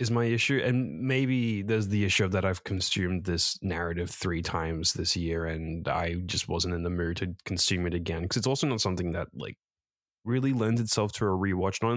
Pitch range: 85-110 Hz